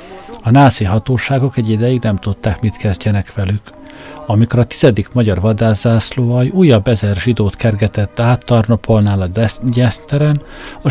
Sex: male